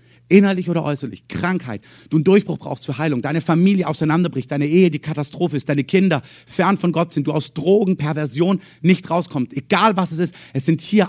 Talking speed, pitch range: 200 wpm, 130-185 Hz